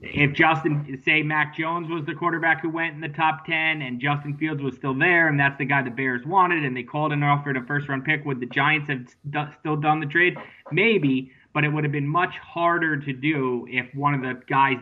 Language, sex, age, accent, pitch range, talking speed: English, male, 20-39, American, 130-155 Hz, 245 wpm